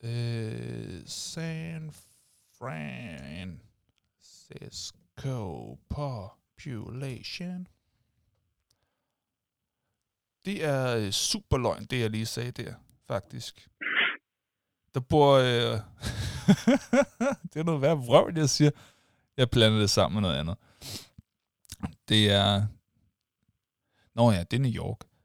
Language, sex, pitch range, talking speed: Danish, male, 110-155 Hz, 90 wpm